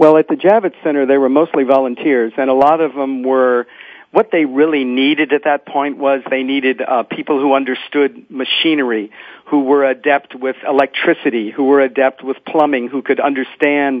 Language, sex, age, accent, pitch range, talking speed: English, male, 50-69, American, 125-150 Hz, 185 wpm